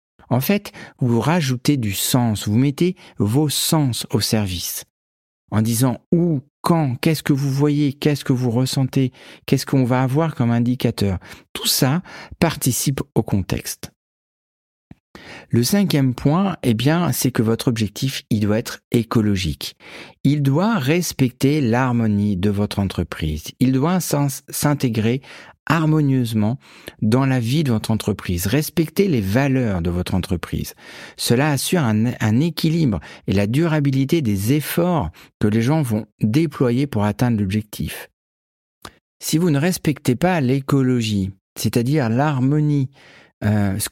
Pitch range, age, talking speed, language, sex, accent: 110-150 Hz, 50-69, 135 wpm, French, male, French